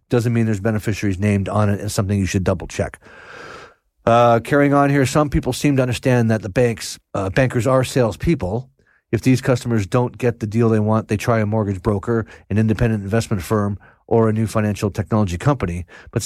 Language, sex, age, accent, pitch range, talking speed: English, male, 40-59, American, 105-125 Hz, 195 wpm